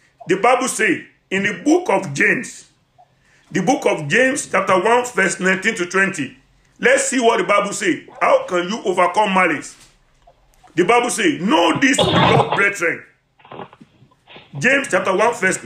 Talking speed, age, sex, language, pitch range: 155 wpm, 50-69, male, English, 180-245 Hz